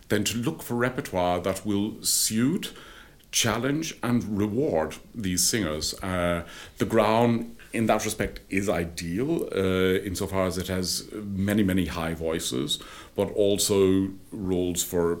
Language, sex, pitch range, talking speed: Dutch, male, 90-110 Hz, 130 wpm